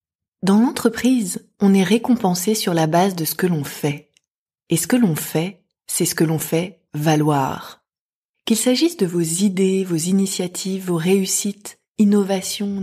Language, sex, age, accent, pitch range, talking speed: French, female, 20-39, French, 170-225 Hz, 160 wpm